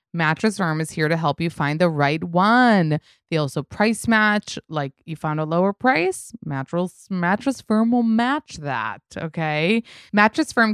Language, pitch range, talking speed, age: English, 155-205 Hz, 160 wpm, 20-39